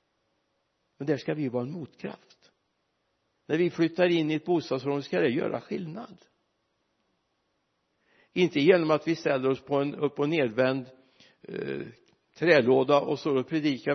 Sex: male